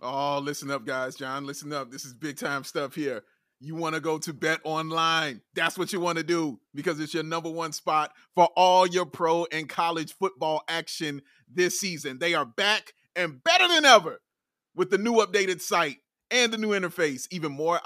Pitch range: 155-210 Hz